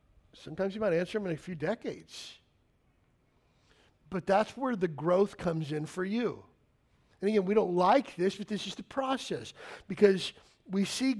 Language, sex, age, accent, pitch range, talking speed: English, male, 40-59, American, 155-205 Hz, 170 wpm